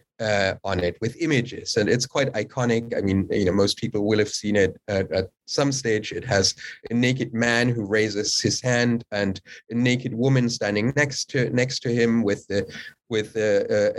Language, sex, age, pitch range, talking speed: English, male, 30-49, 110-140 Hz, 200 wpm